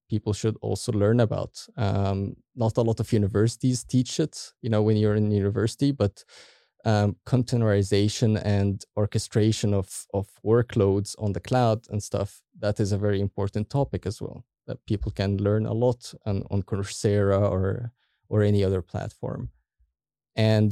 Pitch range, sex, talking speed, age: 105-120 Hz, male, 160 wpm, 20-39